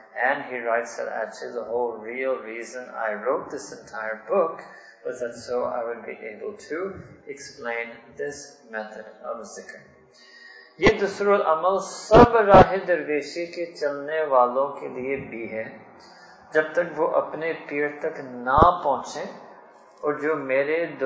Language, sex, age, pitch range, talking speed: English, male, 20-39, 120-170 Hz, 70 wpm